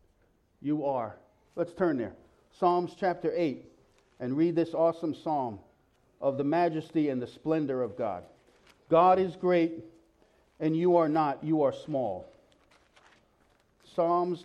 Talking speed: 135 wpm